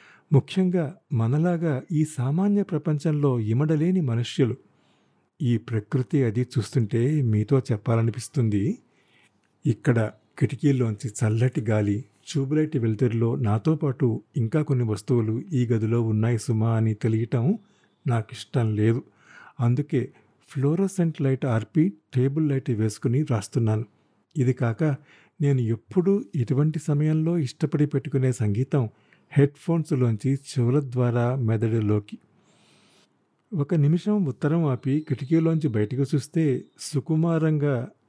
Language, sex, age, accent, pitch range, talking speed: Telugu, male, 50-69, native, 115-150 Hz, 100 wpm